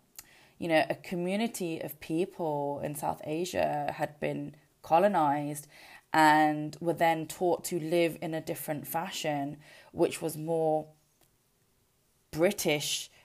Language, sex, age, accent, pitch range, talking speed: English, female, 20-39, British, 150-190 Hz, 120 wpm